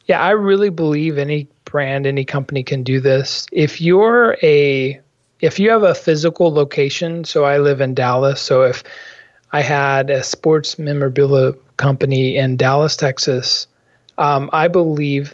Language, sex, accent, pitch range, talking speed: English, male, American, 140-170 Hz, 155 wpm